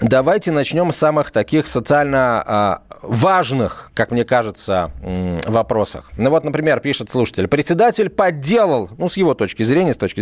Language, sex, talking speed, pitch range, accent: Russian, male, 145 wpm, 130-180 Hz, native